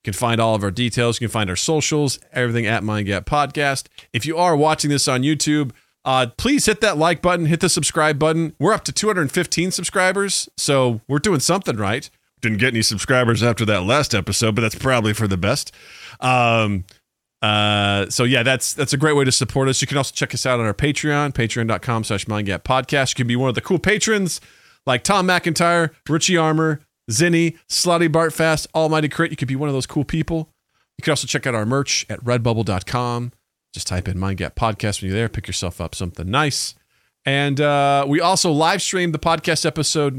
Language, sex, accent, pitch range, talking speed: English, male, American, 110-155 Hz, 205 wpm